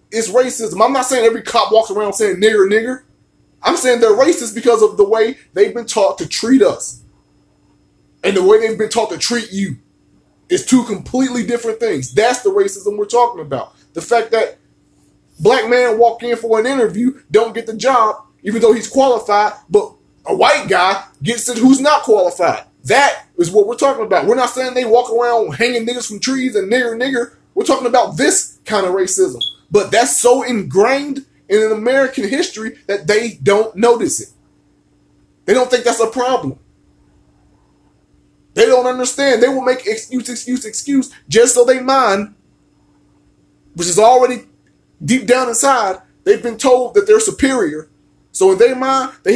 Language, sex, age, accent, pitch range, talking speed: English, male, 20-39, American, 215-255 Hz, 180 wpm